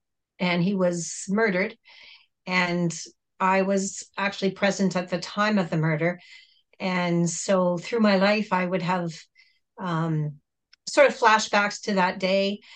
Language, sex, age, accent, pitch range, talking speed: English, female, 40-59, American, 185-215 Hz, 140 wpm